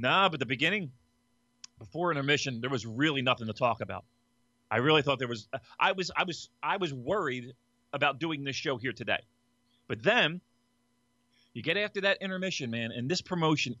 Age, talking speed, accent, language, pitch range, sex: 30-49, 185 wpm, American, English, 120-150 Hz, male